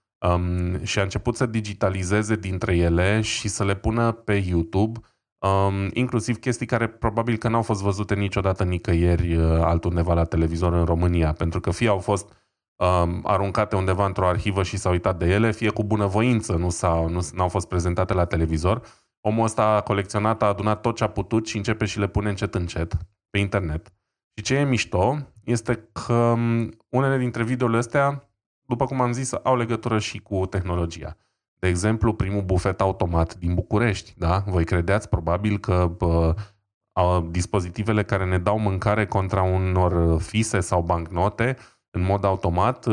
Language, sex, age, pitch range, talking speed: Romanian, male, 20-39, 90-110 Hz, 165 wpm